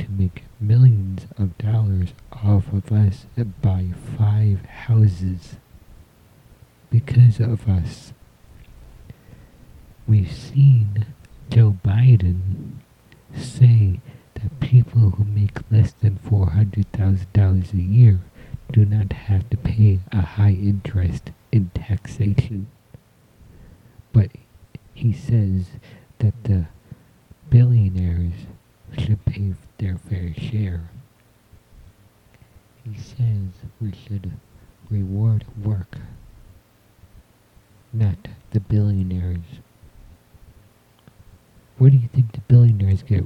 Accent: American